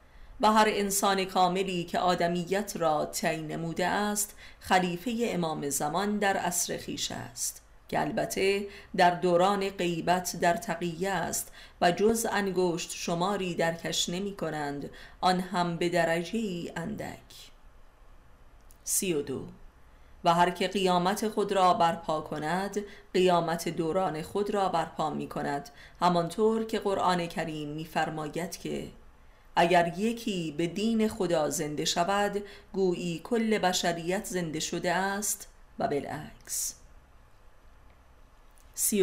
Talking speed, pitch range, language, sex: 115 wpm, 160-195 Hz, Persian, female